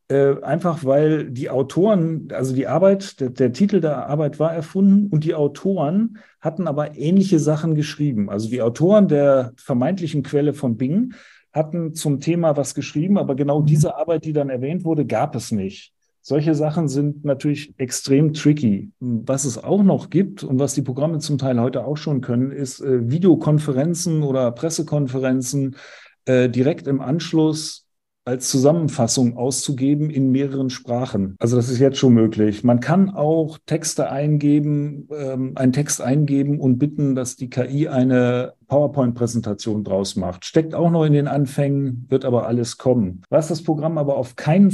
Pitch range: 130-160 Hz